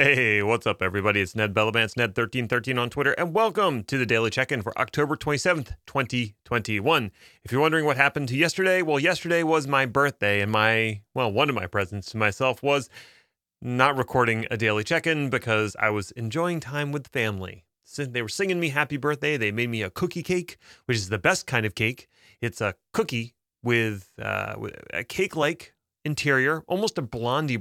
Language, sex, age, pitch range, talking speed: English, male, 30-49, 110-150 Hz, 185 wpm